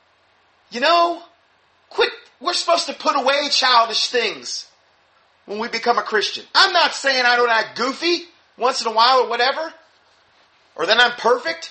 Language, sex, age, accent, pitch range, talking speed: English, male, 30-49, American, 205-295 Hz, 165 wpm